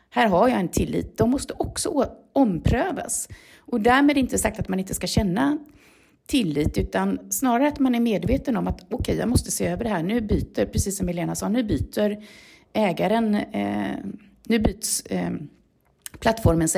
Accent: native